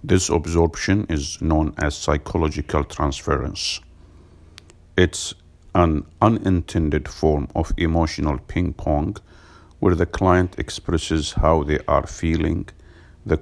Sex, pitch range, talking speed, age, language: male, 80-90 Hz, 105 wpm, 50-69, English